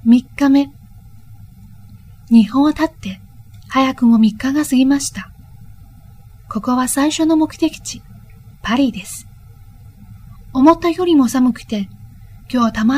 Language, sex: Chinese, female